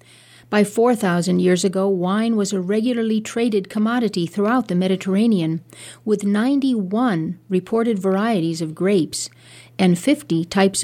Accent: American